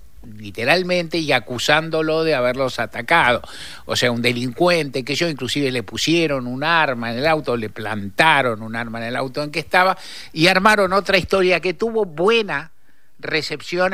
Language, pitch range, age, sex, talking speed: Spanish, 125-185 Hz, 60-79, male, 165 wpm